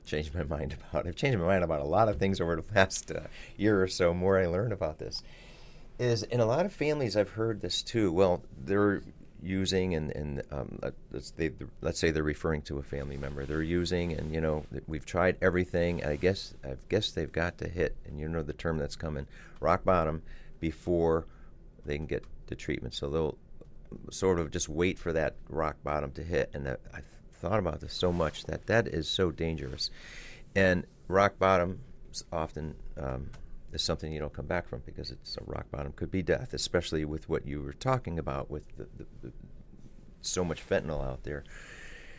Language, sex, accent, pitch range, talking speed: English, male, American, 75-95 Hz, 205 wpm